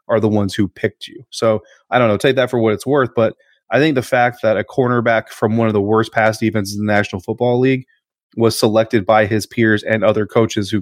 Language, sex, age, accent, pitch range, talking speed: English, male, 30-49, American, 105-125 Hz, 250 wpm